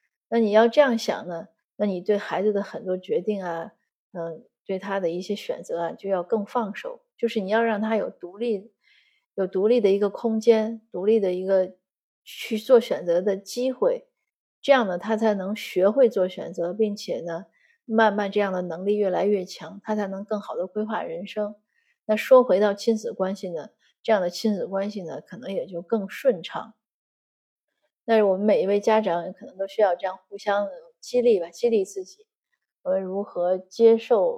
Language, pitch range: Chinese, 185-225 Hz